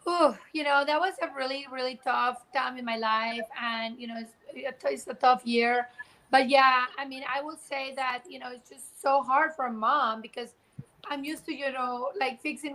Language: English